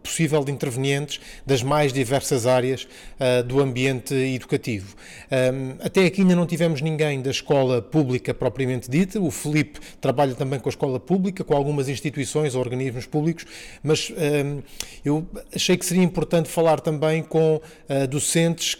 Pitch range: 135-165 Hz